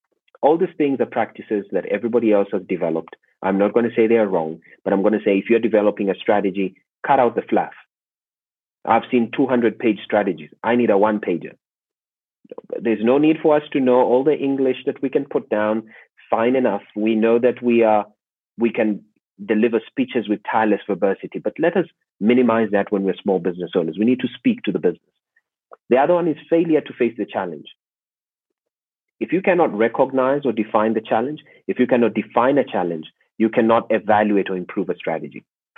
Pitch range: 105-125 Hz